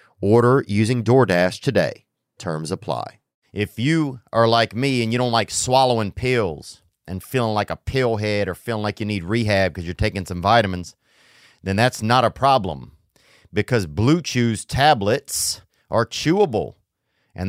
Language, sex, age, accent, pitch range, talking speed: English, male, 40-59, American, 105-135 Hz, 160 wpm